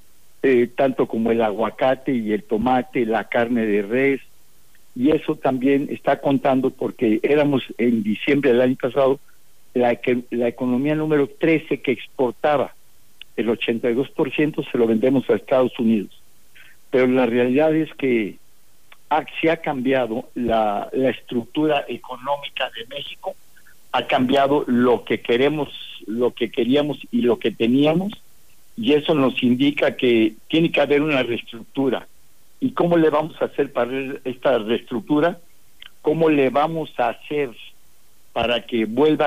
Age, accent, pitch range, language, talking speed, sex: 60-79, Mexican, 120-145 Hz, Spanish, 140 wpm, male